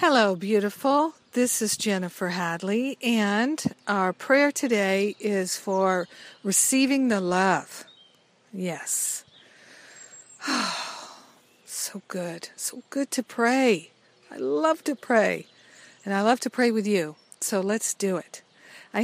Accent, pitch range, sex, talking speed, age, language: American, 195-230 Hz, female, 125 wpm, 50-69, English